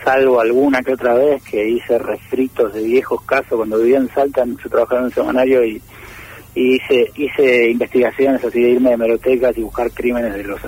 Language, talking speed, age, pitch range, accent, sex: Spanish, 190 wpm, 40-59, 115-150 Hz, Argentinian, male